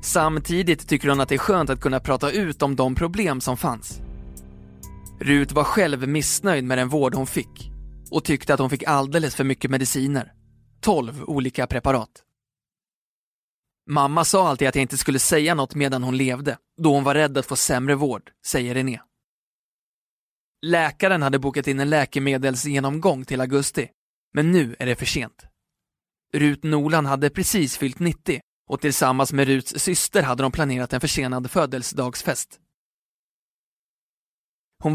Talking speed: 155 wpm